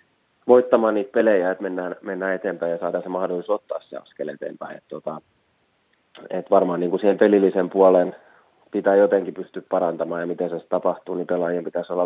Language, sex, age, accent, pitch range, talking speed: Finnish, male, 20-39, native, 85-95 Hz, 175 wpm